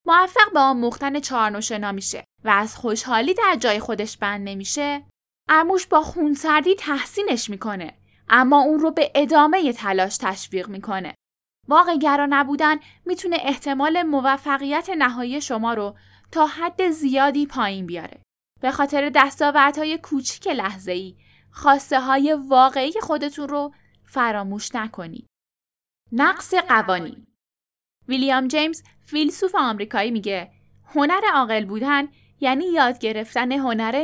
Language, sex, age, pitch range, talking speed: Persian, female, 10-29, 220-310 Hz, 120 wpm